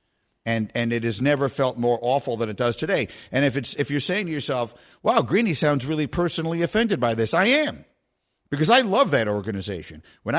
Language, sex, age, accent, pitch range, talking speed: English, male, 50-69, American, 115-165 Hz, 210 wpm